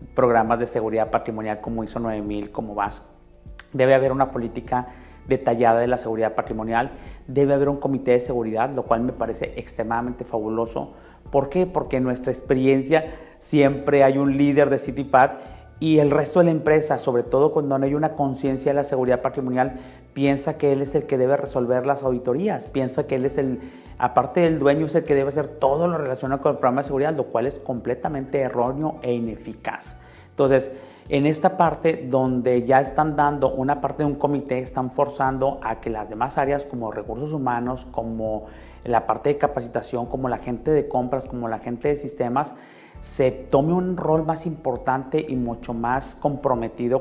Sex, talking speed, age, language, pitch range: male, 185 wpm, 40-59, Spanish, 120-140 Hz